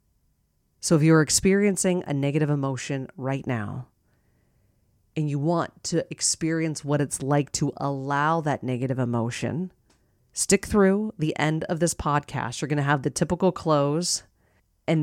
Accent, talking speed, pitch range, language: American, 150 wpm, 140-170 Hz, English